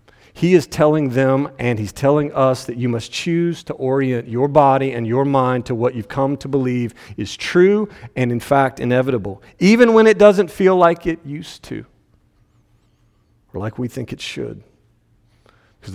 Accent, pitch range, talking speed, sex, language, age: American, 120-170 Hz, 175 wpm, male, English, 40-59